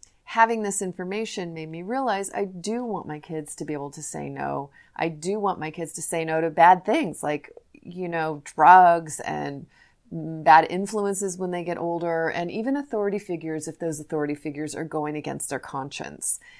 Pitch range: 155-195 Hz